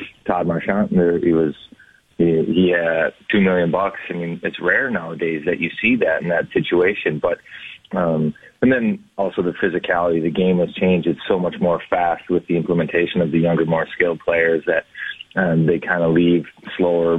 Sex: male